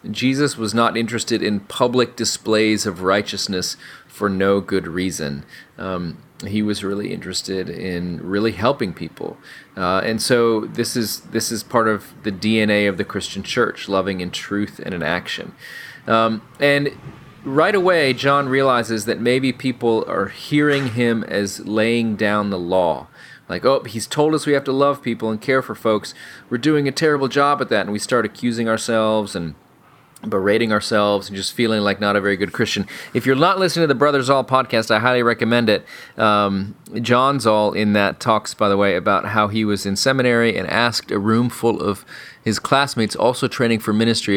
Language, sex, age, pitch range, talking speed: English, male, 30-49, 100-120 Hz, 185 wpm